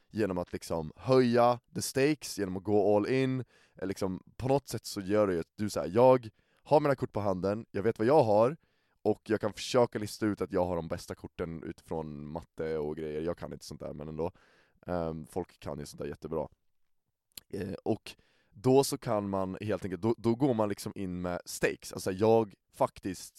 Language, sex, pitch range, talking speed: Swedish, male, 90-115 Hz, 210 wpm